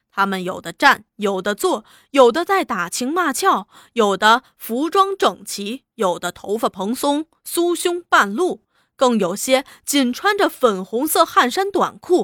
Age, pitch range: 20-39, 215-330 Hz